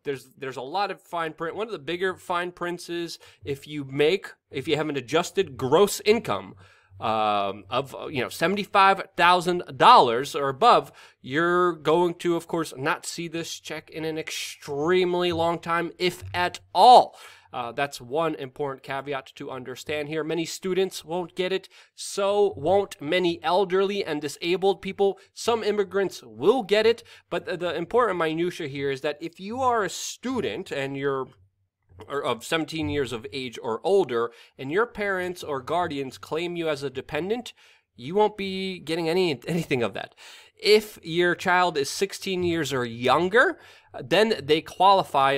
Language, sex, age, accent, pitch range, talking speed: English, male, 20-39, American, 140-190 Hz, 165 wpm